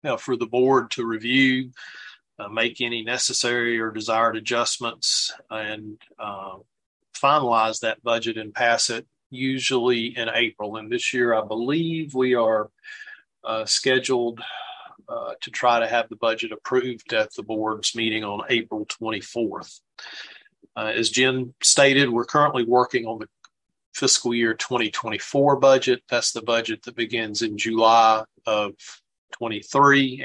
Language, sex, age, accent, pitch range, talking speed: English, male, 40-59, American, 110-130 Hz, 140 wpm